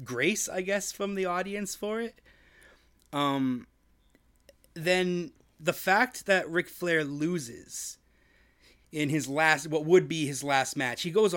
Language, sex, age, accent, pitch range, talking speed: English, male, 30-49, American, 135-180 Hz, 140 wpm